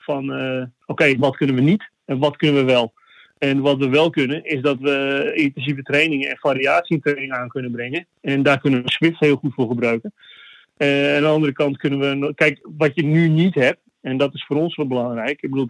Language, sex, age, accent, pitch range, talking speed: Dutch, male, 30-49, Dutch, 130-150 Hz, 230 wpm